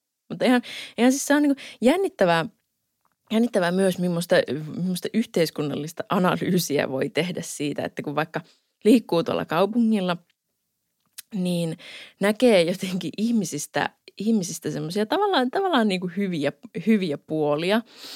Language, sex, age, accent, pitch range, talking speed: Finnish, female, 20-39, native, 160-220 Hz, 115 wpm